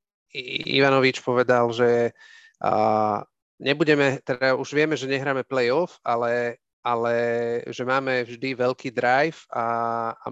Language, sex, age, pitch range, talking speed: Slovak, male, 40-59, 120-140 Hz, 115 wpm